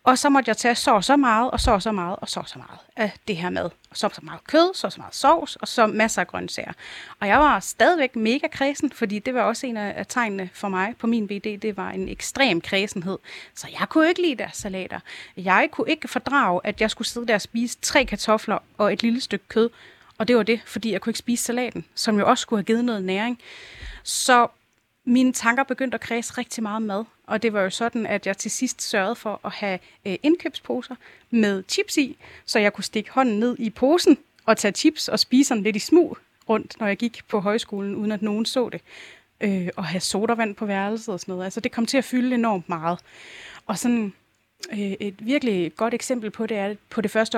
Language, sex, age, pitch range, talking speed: Danish, female, 30-49, 205-250 Hz, 240 wpm